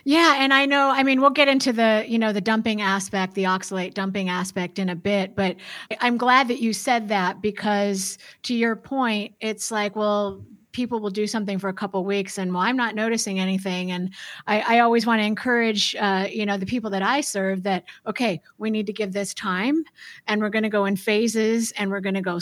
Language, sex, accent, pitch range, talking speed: English, female, American, 195-235 Hz, 230 wpm